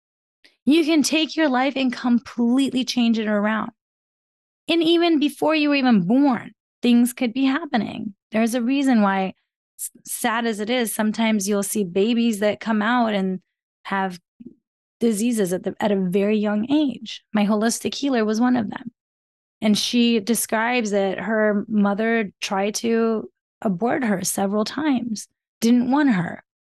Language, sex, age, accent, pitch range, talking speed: English, female, 20-39, American, 200-240 Hz, 150 wpm